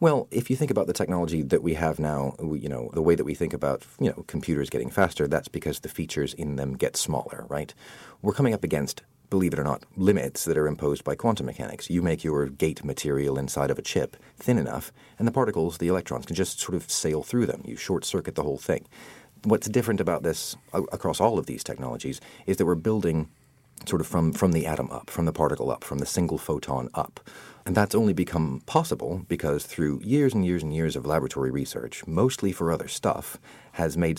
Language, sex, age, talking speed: English, male, 40-59, 220 wpm